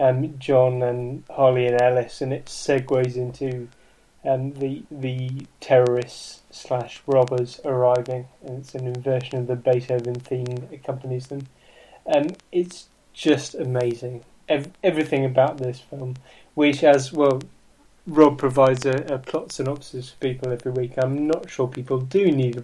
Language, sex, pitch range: English, male, 125-145 Hz